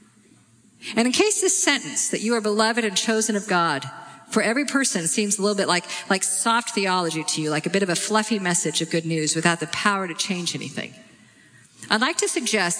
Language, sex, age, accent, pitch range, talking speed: English, female, 50-69, American, 170-220 Hz, 215 wpm